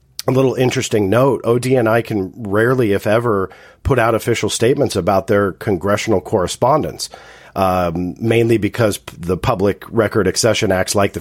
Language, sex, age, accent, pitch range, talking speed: English, male, 40-59, American, 90-115 Hz, 145 wpm